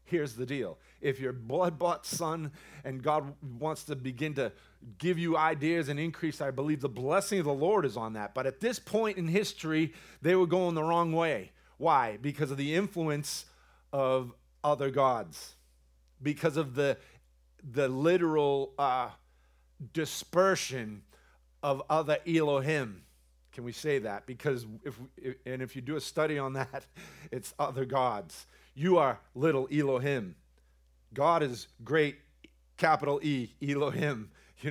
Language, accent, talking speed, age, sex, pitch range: English, American, 150 wpm, 40-59, male, 130-155 Hz